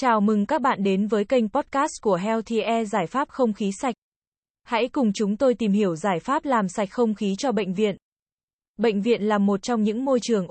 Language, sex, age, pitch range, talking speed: Vietnamese, female, 20-39, 205-245 Hz, 225 wpm